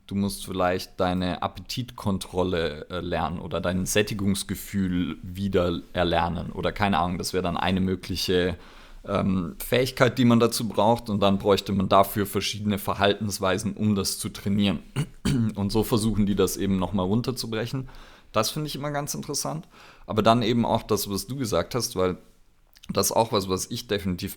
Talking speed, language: 165 wpm, German